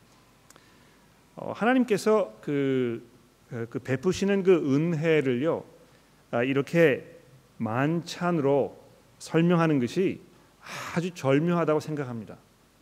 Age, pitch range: 40-59, 135-170 Hz